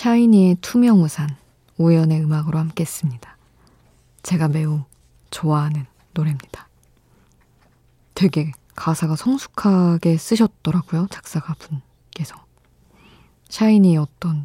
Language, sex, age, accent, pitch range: Korean, female, 20-39, native, 150-175 Hz